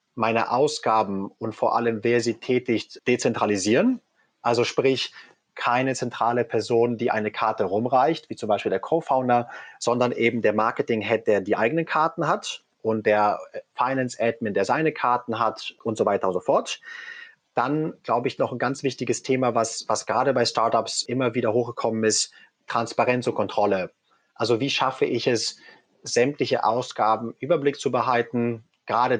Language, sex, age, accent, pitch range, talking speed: German, male, 30-49, German, 110-130 Hz, 155 wpm